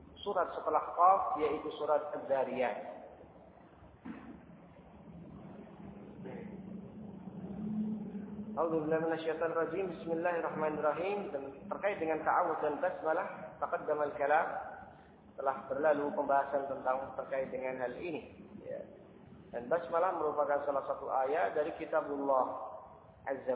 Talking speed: 95 wpm